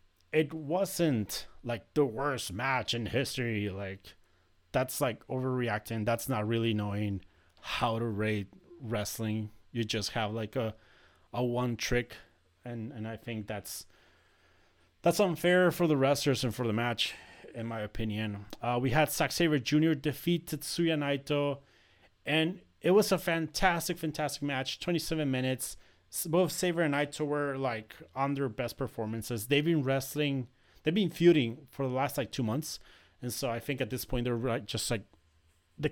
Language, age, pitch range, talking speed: English, 30-49, 105-150 Hz, 160 wpm